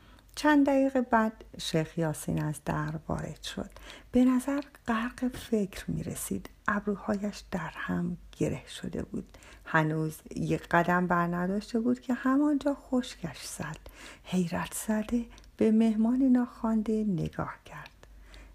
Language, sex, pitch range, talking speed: Persian, female, 165-245 Hz, 125 wpm